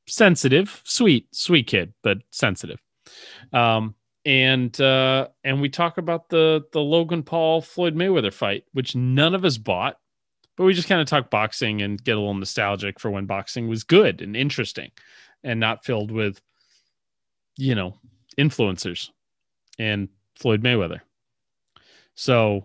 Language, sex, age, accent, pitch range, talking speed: English, male, 30-49, American, 110-145 Hz, 145 wpm